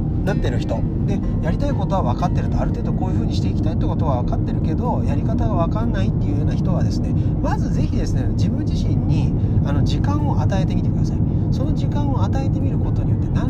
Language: Japanese